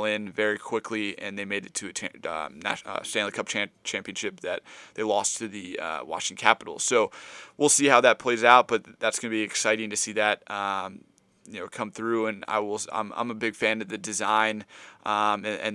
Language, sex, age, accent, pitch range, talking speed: English, male, 20-39, American, 105-115 Hz, 215 wpm